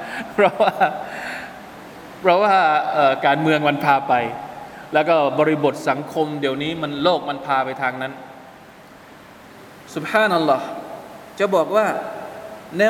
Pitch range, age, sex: 160-255 Hz, 20-39, male